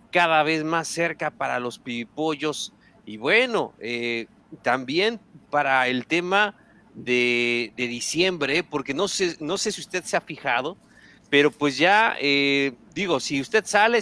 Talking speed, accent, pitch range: 150 wpm, Mexican, 130-180 Hz